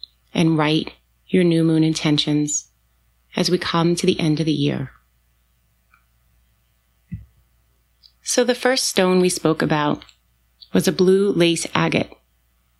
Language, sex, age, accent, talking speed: English, female, 30-49, American, 125 wpm